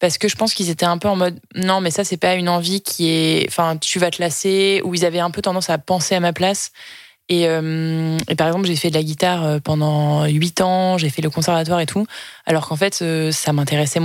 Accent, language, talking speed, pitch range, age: French, French, 250 wpm, 160-190 Hz, 20-39